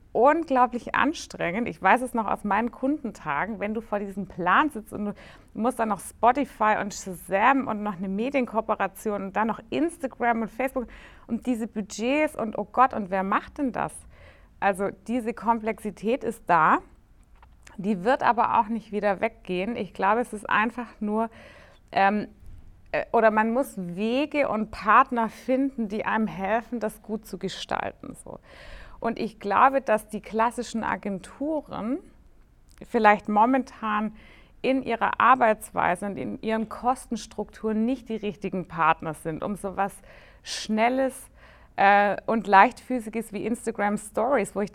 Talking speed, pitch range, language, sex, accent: 150 wpm, 205-245 Hz, German, female, German